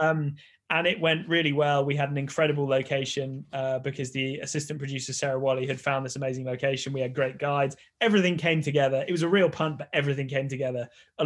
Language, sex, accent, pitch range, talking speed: English, male, British, 135-150 Hz, 215 wpm